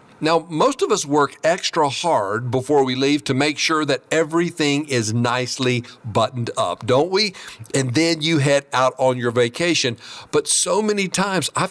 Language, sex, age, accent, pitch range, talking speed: English, male, 50-69, American, 130-180 Hz, 175 wpm